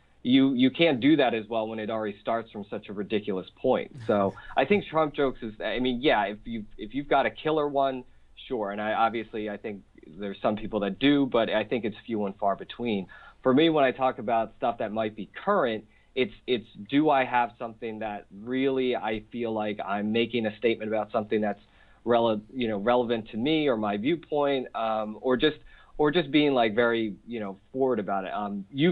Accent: American